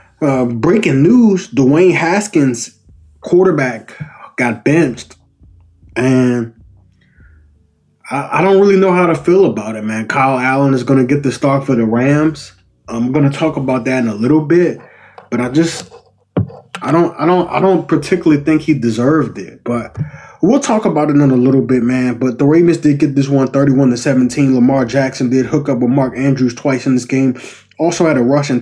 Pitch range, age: 120-170 Hz, 20-39